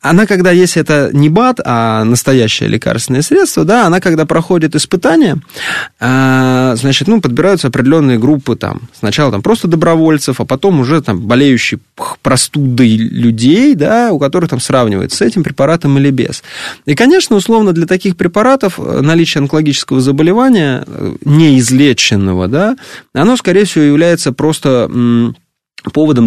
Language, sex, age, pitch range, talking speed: Russian, male, 20-39, 130-190 Hz, 135 wpm